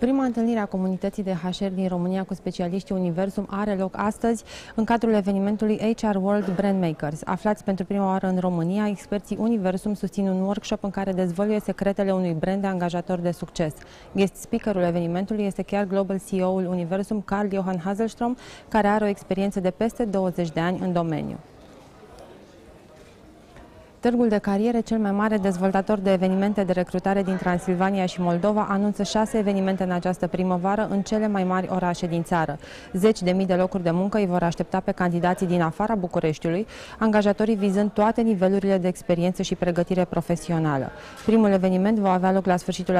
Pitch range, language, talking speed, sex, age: 180-205 Hz, Romanian, 170 wpm, female, 20-39